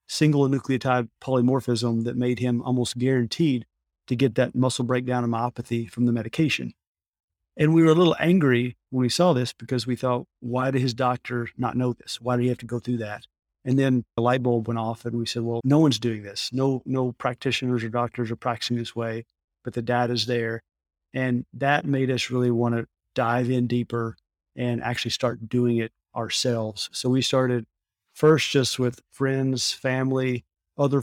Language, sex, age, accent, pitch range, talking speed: English, male, 40-59, American, 115-130 Hz, 195 wpm